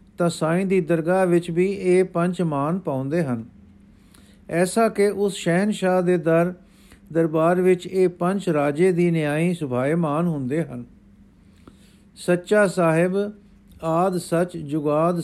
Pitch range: 155-190 Hz